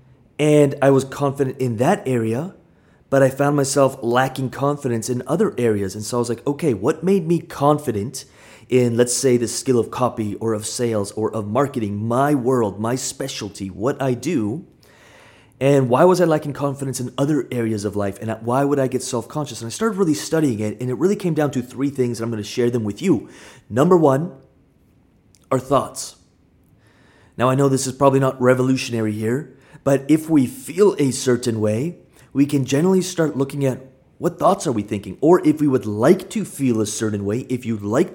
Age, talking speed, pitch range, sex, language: 30-49, 205 wpm, 115-145 Hz, male, English